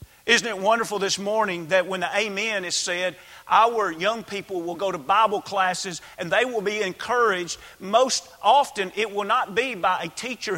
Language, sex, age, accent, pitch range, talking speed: English, male, 40-59, American, 180-225 Hz, 185 wpm